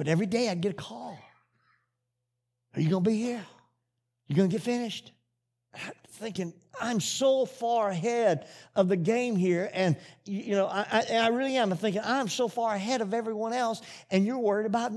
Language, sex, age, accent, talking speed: English, male, 50-69, American, 200 wpm